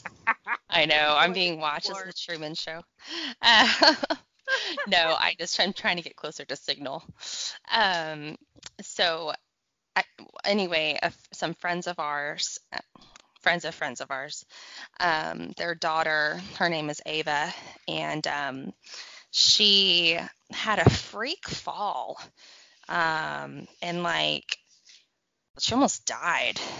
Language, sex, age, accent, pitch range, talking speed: English, female, 20-39, American, 155-185 Hz, 125 wpm